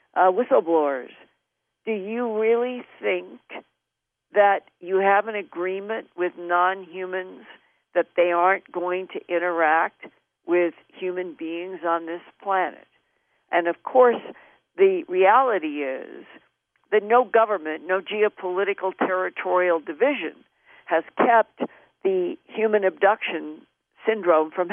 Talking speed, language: 110 wpm, English